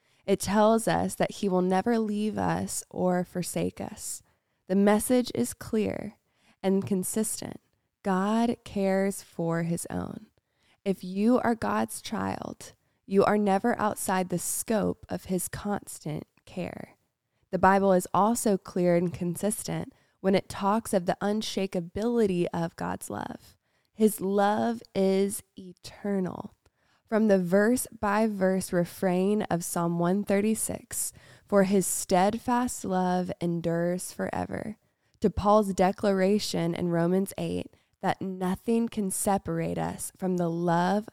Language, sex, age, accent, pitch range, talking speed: English, female, 20-39, American, 175-210 Hz, 125 wpm